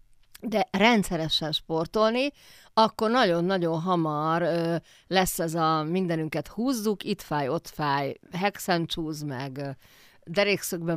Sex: female